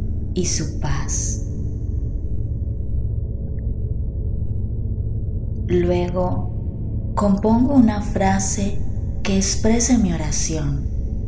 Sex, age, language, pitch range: female, 20-39, Spanish, 95-110 Hz